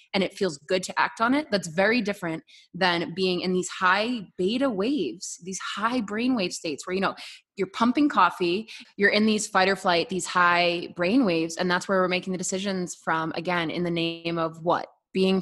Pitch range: 175-215 Hz